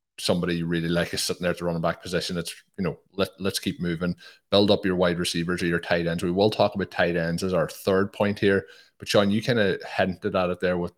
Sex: male